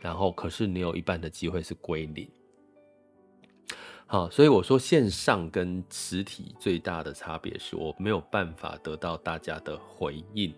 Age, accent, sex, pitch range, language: 20-39, native, male, 85-125 Hz, Chinese